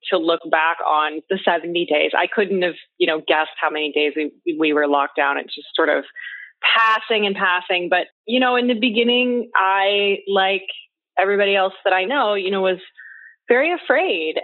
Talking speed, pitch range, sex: 190 wpm, 165-200 Hz, female